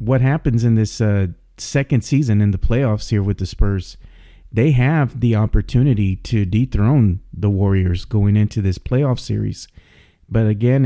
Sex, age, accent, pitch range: male, 40-59, American, 105-125 Hz